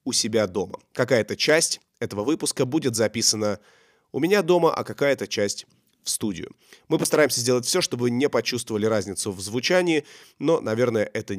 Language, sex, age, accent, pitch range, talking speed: Russian, male, 20-39, native, 115-165 Hz, 165 wpm